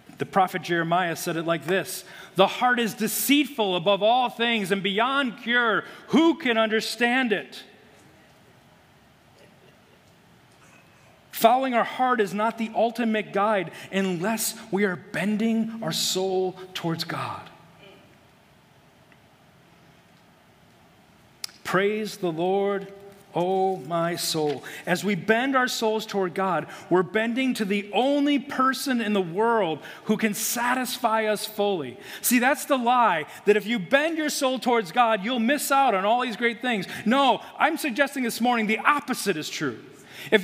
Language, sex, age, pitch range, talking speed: English, male, 40-59, 195-255 Hz, 140 wpm